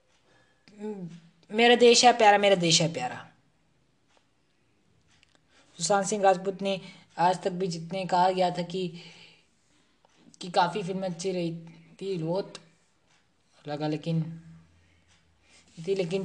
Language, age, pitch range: Hindi, 20-39, 165-210 Hz